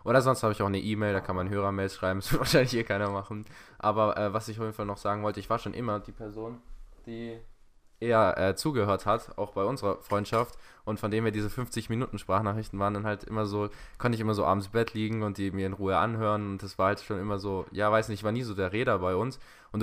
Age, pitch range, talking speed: 20-39, 95-110 Hz, 265 wpm